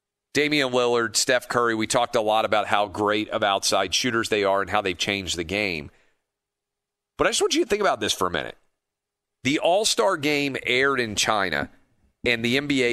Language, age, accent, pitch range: English, 40-59, American, 100-125 Hz